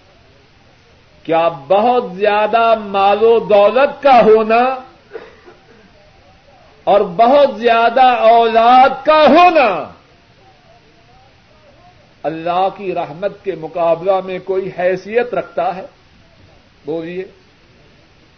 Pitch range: 165-245 Hz